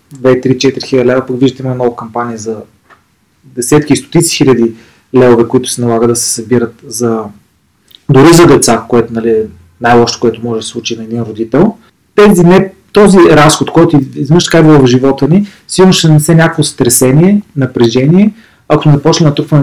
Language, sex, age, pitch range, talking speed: Bulgarian, male, 30-49, 120-155 Hz, 175 wpm